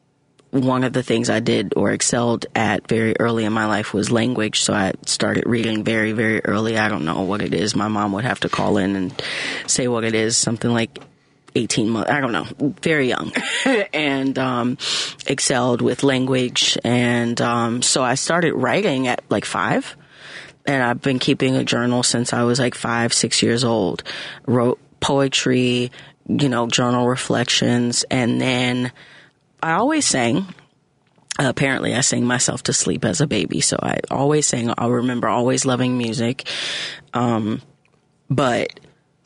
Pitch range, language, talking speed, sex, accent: 115-135 Hz, English, 170 wpm, female, American